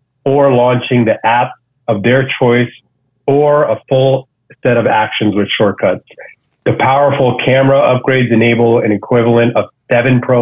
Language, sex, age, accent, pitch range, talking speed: English, male, 30-49, American, 115-130 Hz, 145 wpm